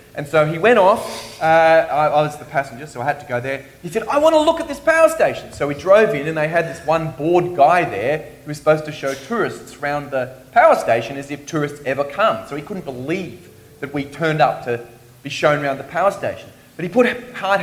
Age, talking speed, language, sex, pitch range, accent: 30-49, 245 wpm, English, male, 135-205 Hz, Australian